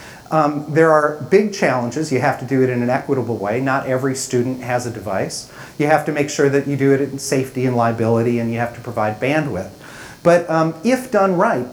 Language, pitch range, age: English, 125-150 Hz, 40-59